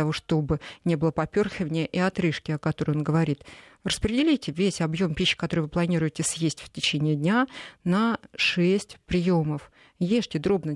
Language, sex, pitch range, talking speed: Russian, female, 160-190 Hz, 155 wpm